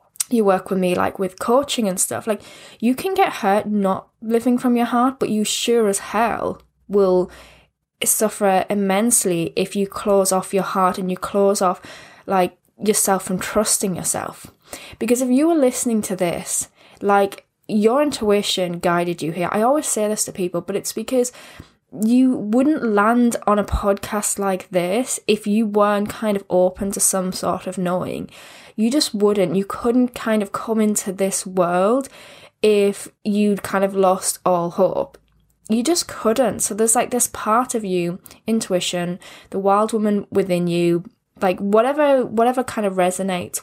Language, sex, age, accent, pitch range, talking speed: English, female, 10-29, British, 190-230 Hz, 170 wpm